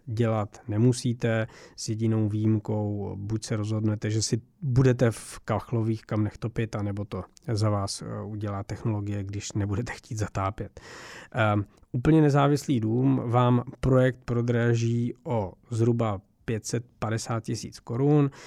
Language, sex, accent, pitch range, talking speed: Czech, male, native, 110-125 Hz, 120 wpm